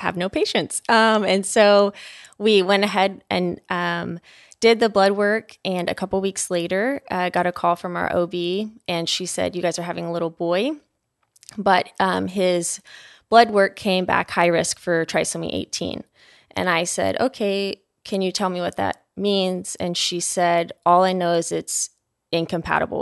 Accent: American